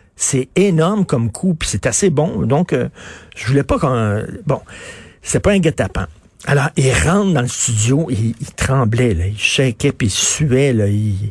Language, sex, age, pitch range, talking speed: French, male, 60-79, 105-140 Hz, 180 wpm